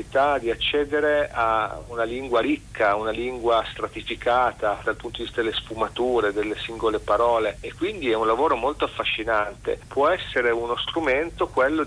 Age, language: 40-59, Italian